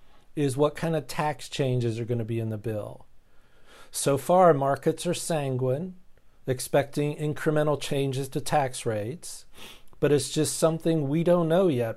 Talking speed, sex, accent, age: 160 wpm, male, American, 50-69